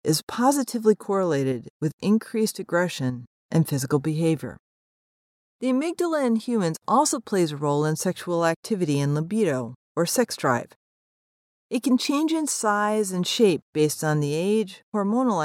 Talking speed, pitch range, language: 145 wpm, 150-220 Hz, English